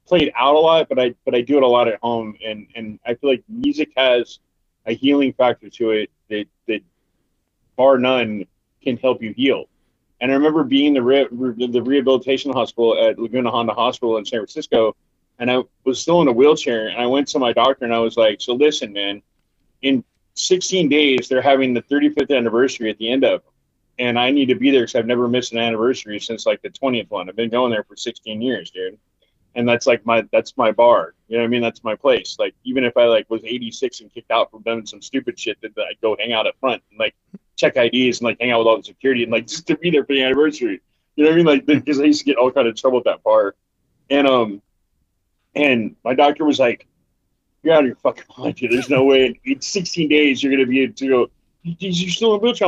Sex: male